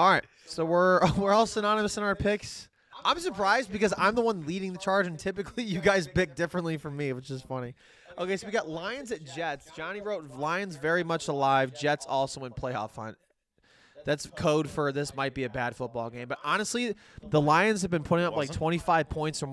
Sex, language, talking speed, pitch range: male, English, 215 wpm, 135-190 Hz